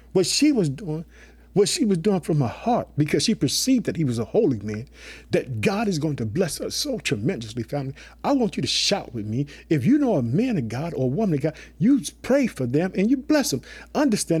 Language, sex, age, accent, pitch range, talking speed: English, male, 50-69, American, 155-235 Hz, 240 wpm